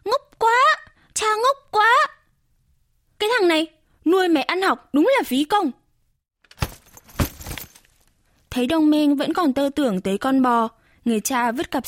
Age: 20-39